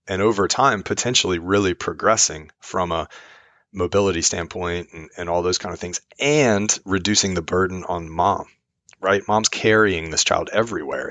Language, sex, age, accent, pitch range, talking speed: English, male, 30-49, American, 85-100 Hz, 155 wpm